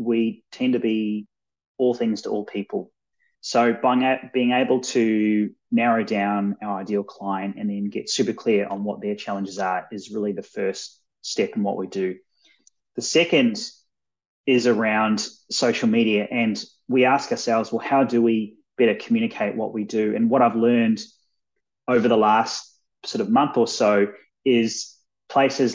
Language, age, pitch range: English, 20-39, 110-140 Hz